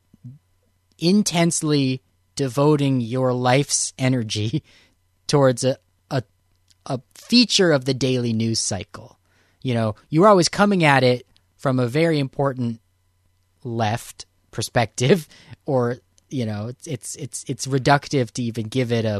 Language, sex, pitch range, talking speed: English, male, 95-145 Hz, 130 wpm